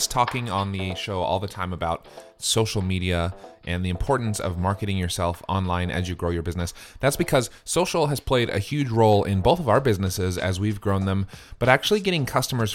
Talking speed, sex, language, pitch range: 200 wpm, male, English, 95-125 Hz